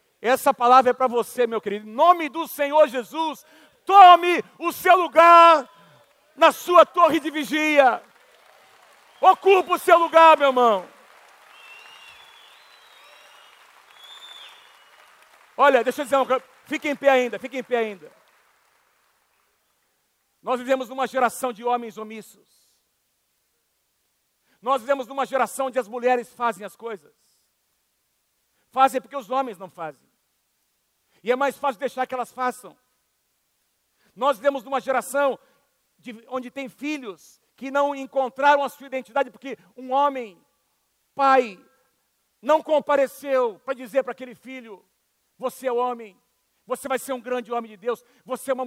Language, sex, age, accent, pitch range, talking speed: Portuguese, male, 50-69, Brazilian, 245-280 Hz, 135 wpm